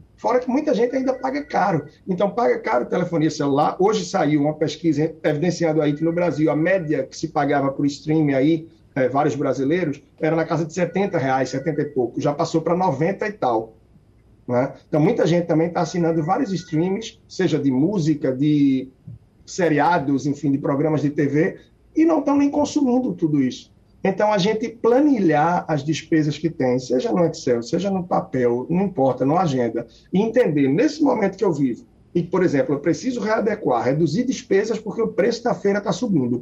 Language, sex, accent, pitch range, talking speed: Portuguese, male, Brazilian, 145-195 Hz, 190 wpm